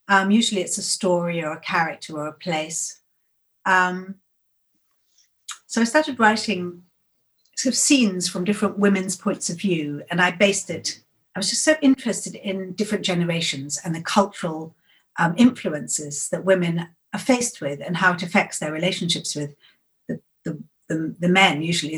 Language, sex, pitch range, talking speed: English, female, 160-200 Hz, 160 wpm